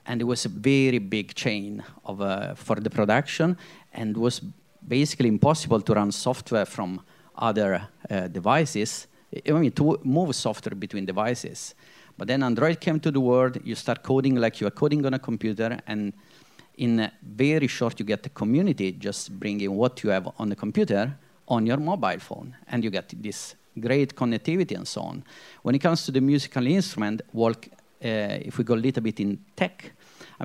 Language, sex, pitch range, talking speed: English, male, 110-140 Hz, 185 wpm